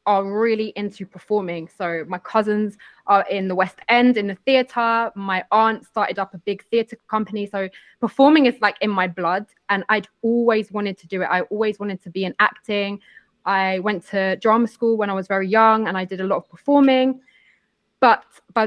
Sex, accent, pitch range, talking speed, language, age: female, British, 190-220 Hz, 205 wpm, English, 20-39